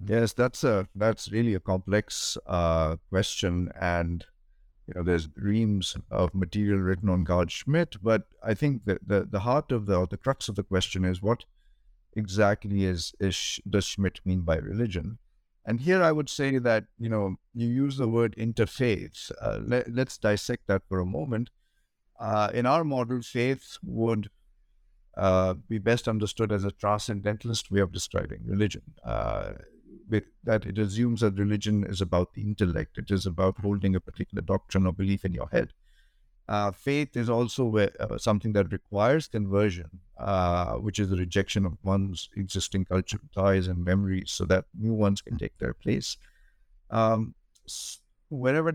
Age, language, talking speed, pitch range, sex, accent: 50-69, English, 170 wpm, 95-115 Hz, male, Indian